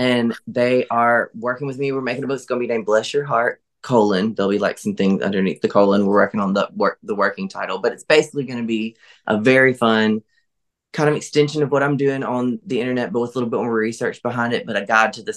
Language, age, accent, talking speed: English, 20-39, American, 260 wpm